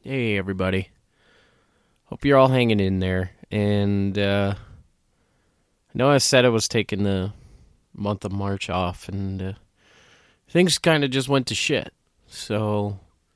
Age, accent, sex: 20-39, American, male